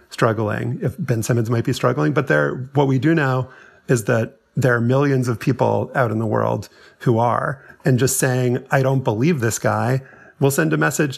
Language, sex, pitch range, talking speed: English, male, 115-135 Hz, 205 wpm